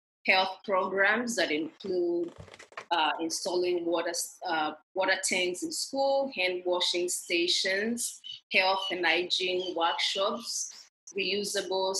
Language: English